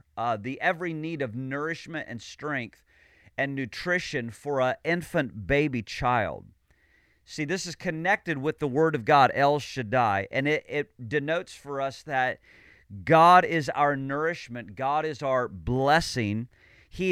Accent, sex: American, male